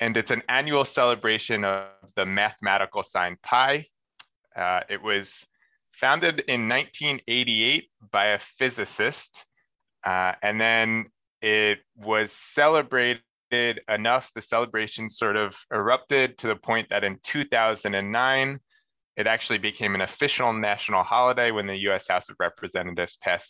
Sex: male